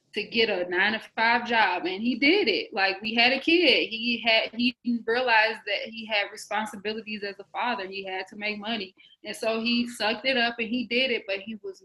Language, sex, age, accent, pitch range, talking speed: English, female, 20-39, American, 200-230 Hz, 230 wpm